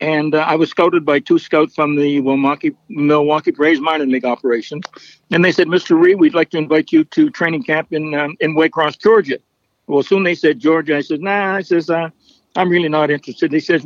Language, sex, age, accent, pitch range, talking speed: English, male, 60-79, American, 150-180 Hz, 220 wpm